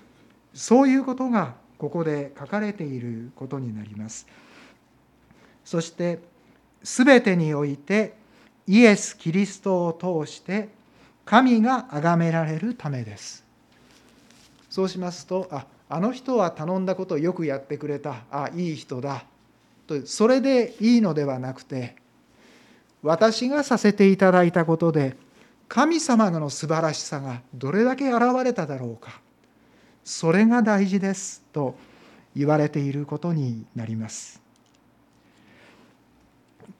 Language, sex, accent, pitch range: Japanese, male, native, 145-225 Hz